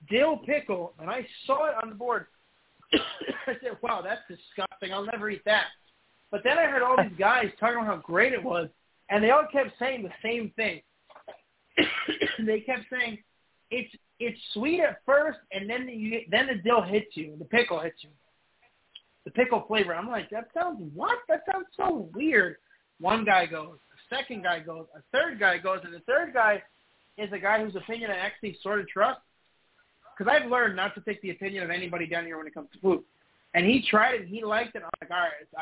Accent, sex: American, male